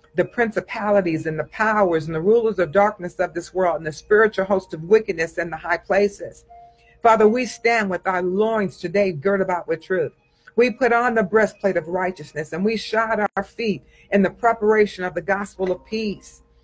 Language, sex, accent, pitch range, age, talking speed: English, female, American, 175-225 Hz, 50-69, 195 wpm